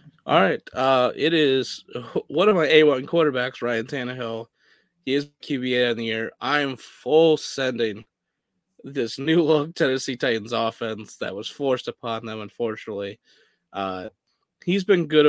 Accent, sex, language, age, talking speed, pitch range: American, male, English, 20-39, 145 wpm, 115-145 Hz